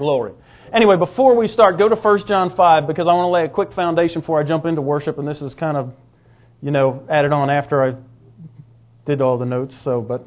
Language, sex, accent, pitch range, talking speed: English, male, American, 130-185 Hz, 235 wpm